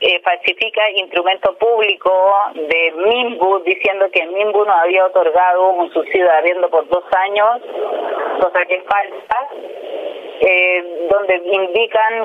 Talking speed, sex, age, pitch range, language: 120 wpm, female, 30-49, 180-215 Hz, Spanish